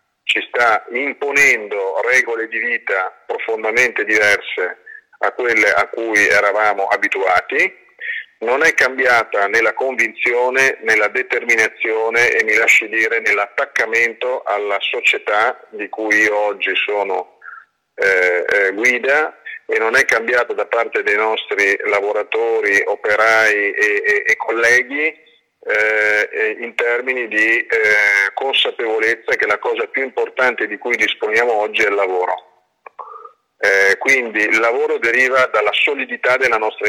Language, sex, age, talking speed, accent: Italian, male, 40-59, 125 wpm, native